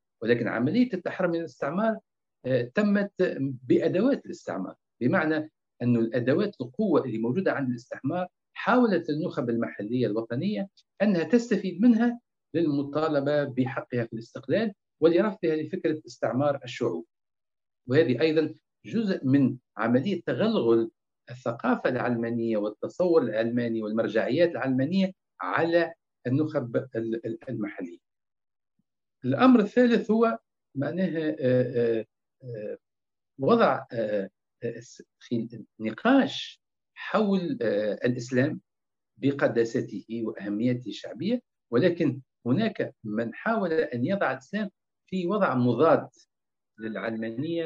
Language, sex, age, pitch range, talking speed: Arabic, male, 50-69, 120-180 Hz, 85 wpm